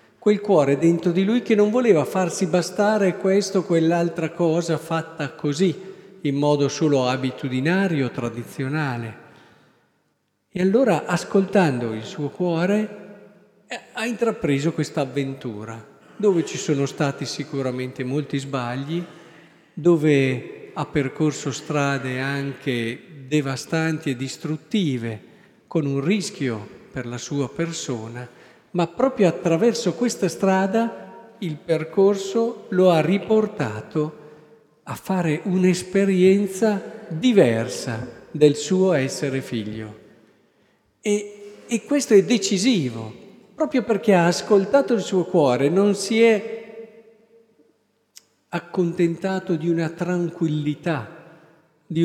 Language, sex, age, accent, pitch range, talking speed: Italian, male, 50-69, native, 145-195 Hz, 105 wpm